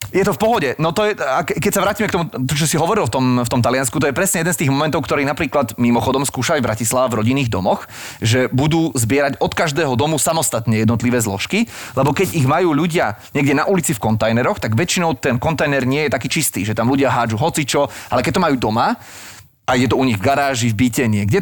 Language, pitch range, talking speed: Slovak, 120-160 Hz, 235 wpm